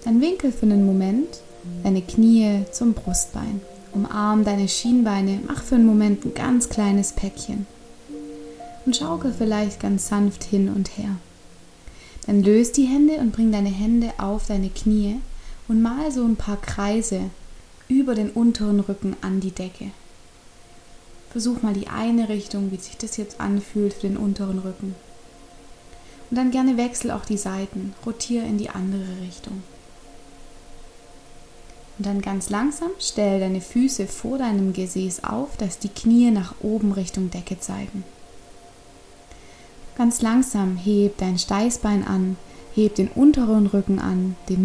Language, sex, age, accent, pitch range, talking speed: German, female, 20-39, German, 190-225 Hz, 145 wpm